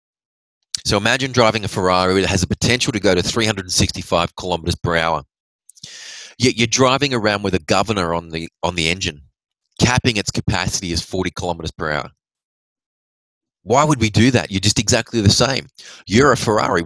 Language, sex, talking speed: English, male, 175 wpm